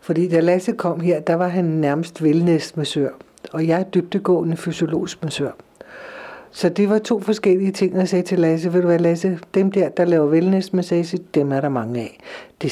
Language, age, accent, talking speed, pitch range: Danish, 60-79, native, 195 wpm, 160-210 Hz